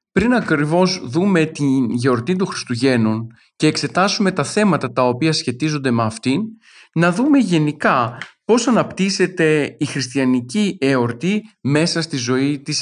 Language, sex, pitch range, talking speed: Greek, male, 130-180 Hz, 130 wpm